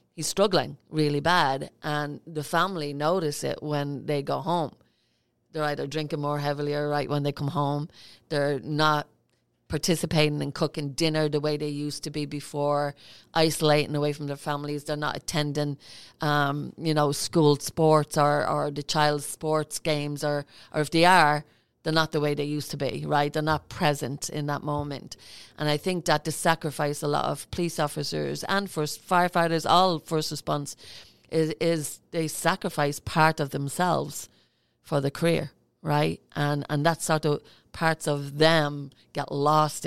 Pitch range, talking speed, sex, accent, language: 145-155 Hz, 170 wpm, female, Irish, English